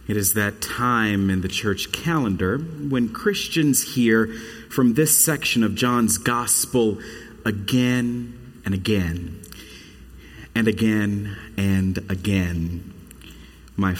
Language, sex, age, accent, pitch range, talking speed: English, male, 40-59, American, 85-115 Hz, 105 wpm